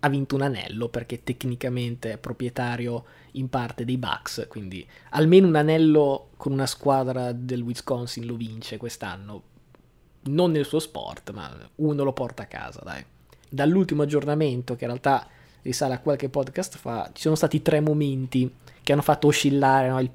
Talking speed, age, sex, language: 165 wpm, 20-39, male, Italian